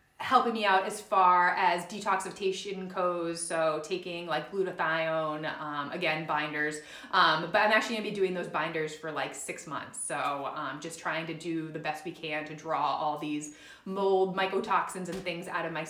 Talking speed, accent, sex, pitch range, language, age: 190 wpm, American, female, 165-210 Hz, English, 30-49